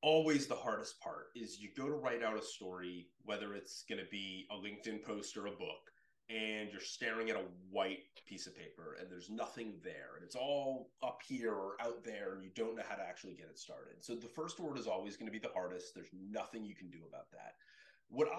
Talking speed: 230 wpm